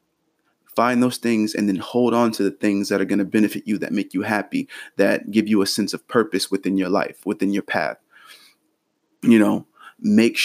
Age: 30-49